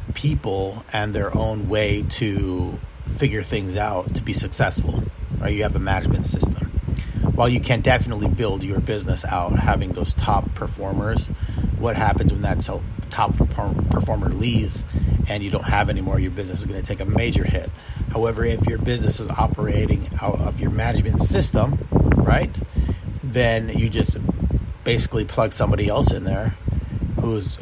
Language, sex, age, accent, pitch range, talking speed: English, male, 30-49, American, 95-115 Hz, 160 wpm